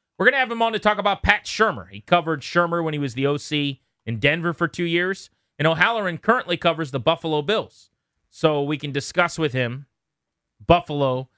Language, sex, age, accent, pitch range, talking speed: English, male, 30-49, American, 115-160 Hz, 200 wpm